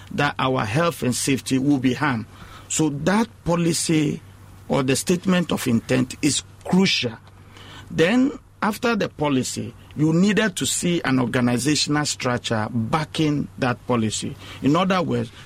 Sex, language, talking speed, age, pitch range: male, English, 135 wpm, 50-69, 115-155 Hz